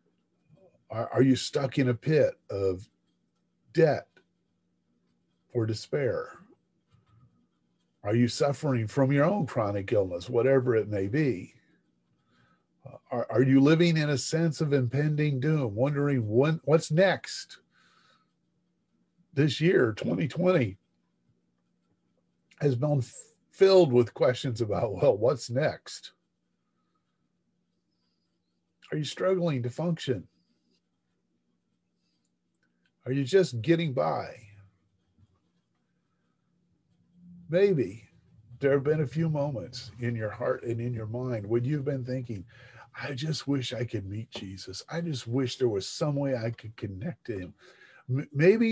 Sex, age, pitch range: male, 50-69, 100-150 Hz